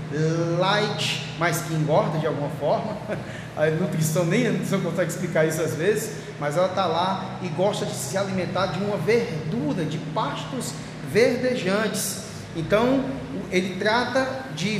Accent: Brazilian